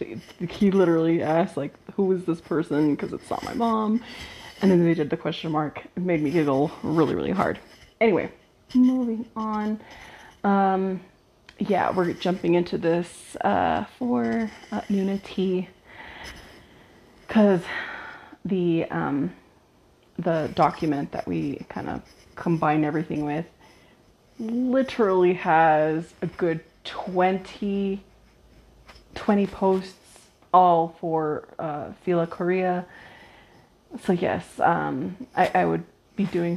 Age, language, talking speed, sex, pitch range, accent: 30-49, English, 120 wpm, female, 170-215 Hz, American